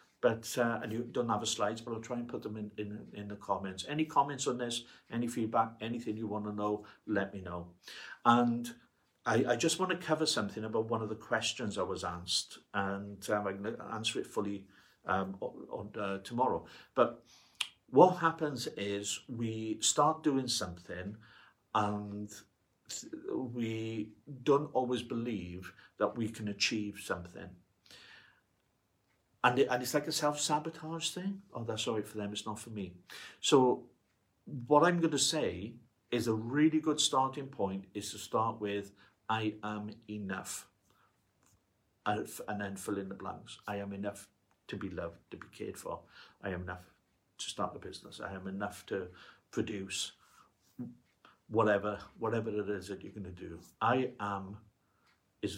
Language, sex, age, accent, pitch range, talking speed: English, male, 50-69, British, 100-120 Hz, 170 wpm